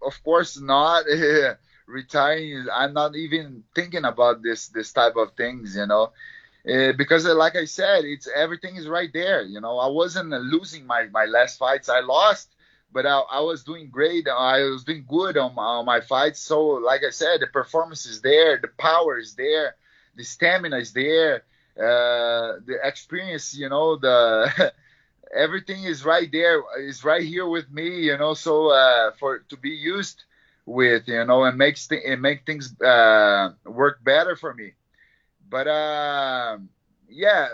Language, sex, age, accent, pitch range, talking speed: English, male, 30-49, Brazilian, 130-175 Hz, 170 wpm